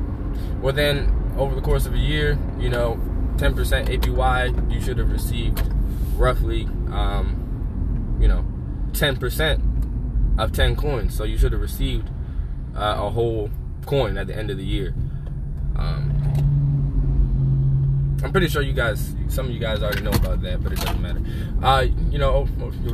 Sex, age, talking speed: male, 20-39, 160 wpm